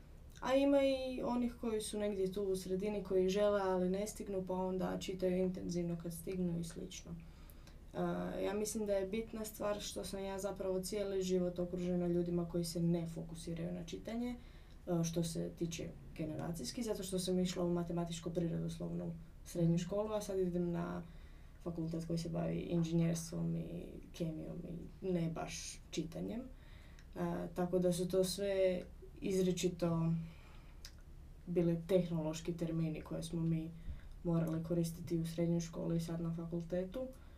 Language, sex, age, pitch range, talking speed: Croatian, female, 20-39, 170-190 Hz, 150 wpm